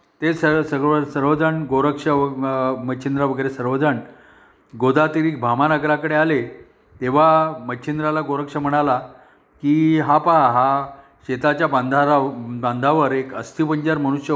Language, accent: Marathi, native